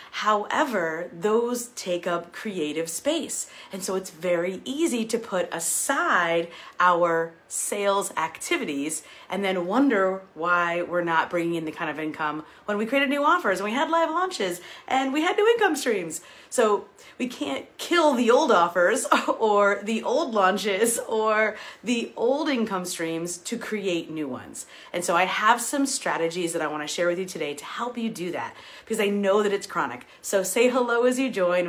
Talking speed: 180 wpm